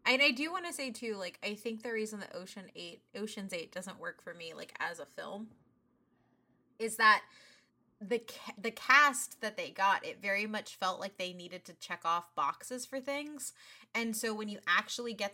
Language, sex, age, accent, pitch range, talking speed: English, female, 20-39, American, 185-250 Hz, 195 wpm